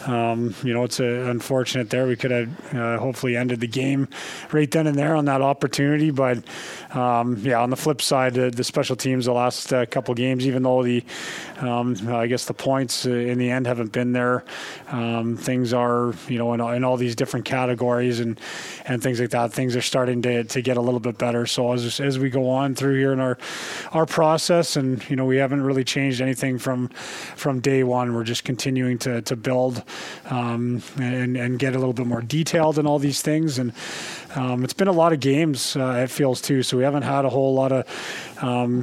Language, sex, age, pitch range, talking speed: English, male, 20-39, 125-140 Hz, 225 wpm